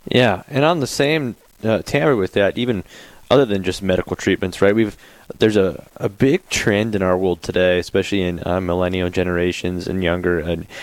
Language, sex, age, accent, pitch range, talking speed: English, male, 20-39, American, 90-120 Hz, 190 wpm